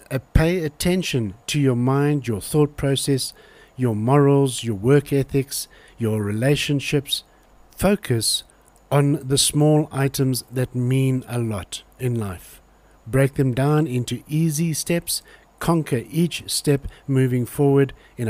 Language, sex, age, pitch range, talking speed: English, male, 60-79, 120-145 Hz, 130 wpm